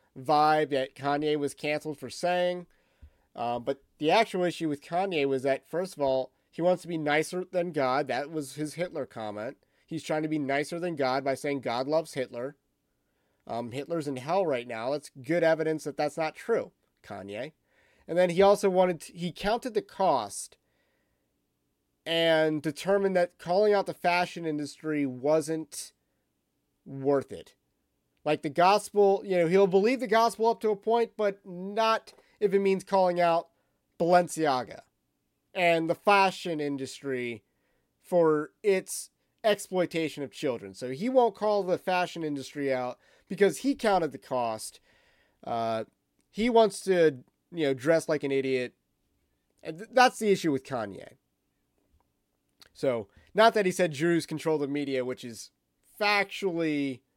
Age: 30-49